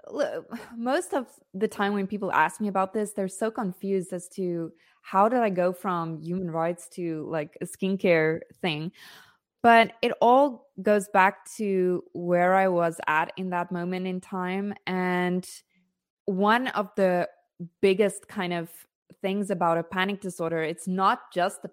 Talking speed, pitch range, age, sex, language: 160 wpm, 175-200 Hz, 20-39, female, English